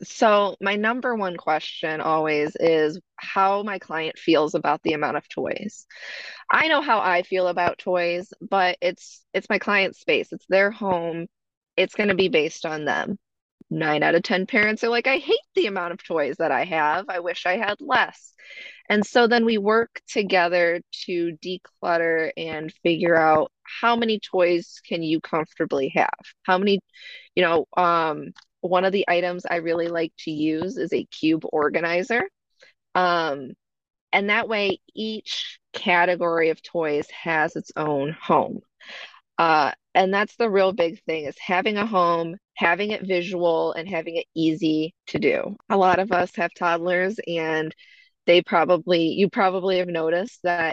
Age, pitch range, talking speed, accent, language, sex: 20-39, 165-200 Hz, 170 wpm, American, English, female